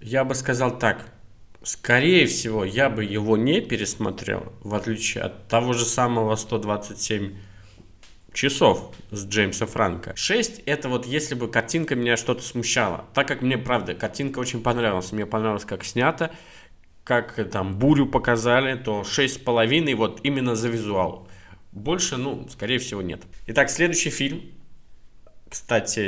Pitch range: 105-135 Hz